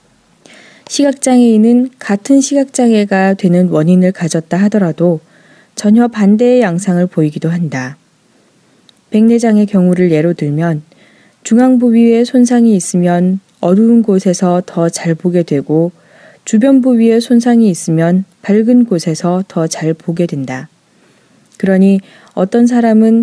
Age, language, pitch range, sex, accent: 20-39, Korean, 170-235 Hz, female, native